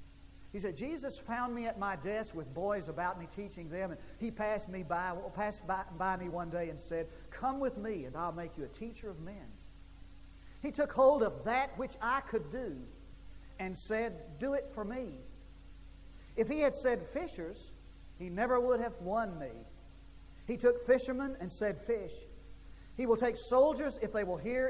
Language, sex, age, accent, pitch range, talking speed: English, male, 40-59, American, 160-255 Hz, 190 wpm